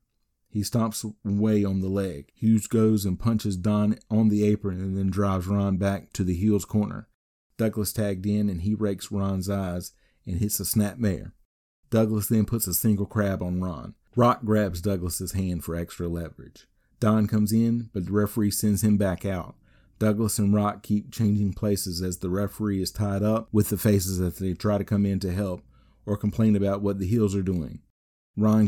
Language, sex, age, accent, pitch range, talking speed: English, male, 40-59, American, 95-105 Hz, 195 wpm